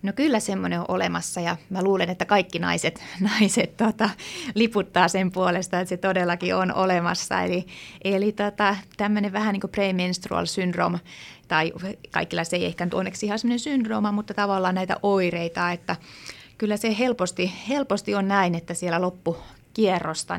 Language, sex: Finnish, female